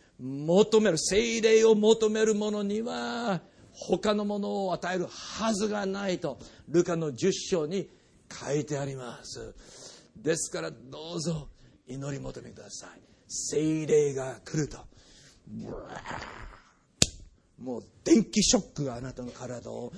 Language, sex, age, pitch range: Japanese, male, 50-69, 125-180 Hz